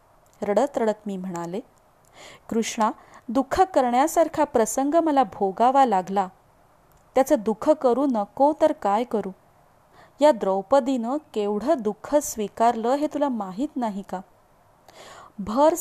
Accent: native